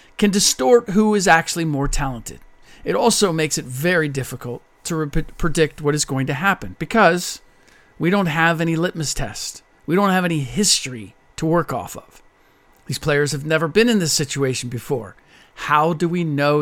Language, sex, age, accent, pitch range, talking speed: English, male, 40-59, American, 140-180 Hz, 180 wpm